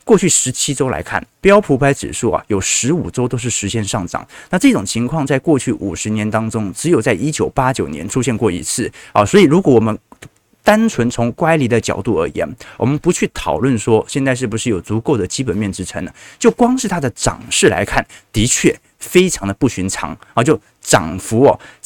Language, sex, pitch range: Chinese, male, 110-150 Hz